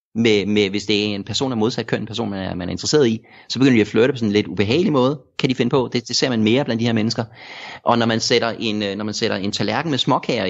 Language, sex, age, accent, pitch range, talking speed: Danish, male, 30-49, native, 105-130 Hz, 310 wpm